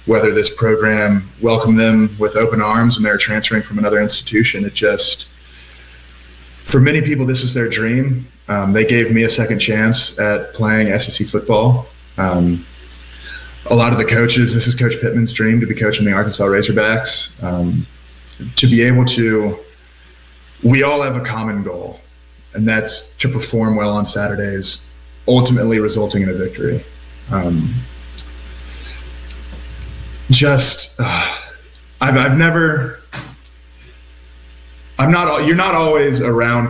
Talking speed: 140 wpm